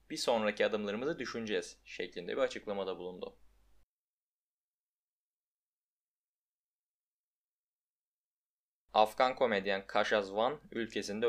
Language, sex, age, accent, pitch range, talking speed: Turkish, male, 20-39, native, 100-130 Hz, 70 wpm